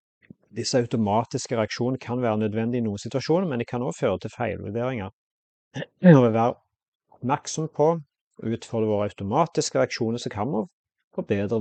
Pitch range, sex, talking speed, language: 100-125 Hz, male, 140 wpm, English